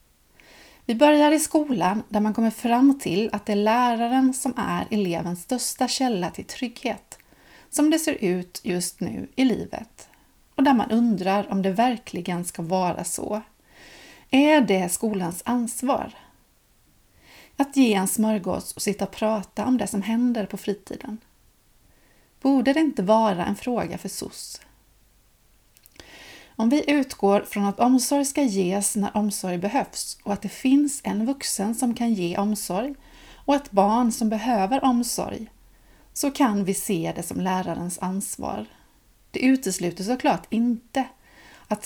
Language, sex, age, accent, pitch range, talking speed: Swedish, female, 30-49, native, 195-260 Hz, 150 wpm